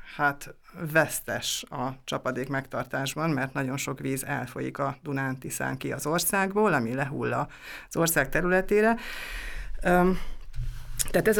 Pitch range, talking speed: 140-170 Hz, 115 wpm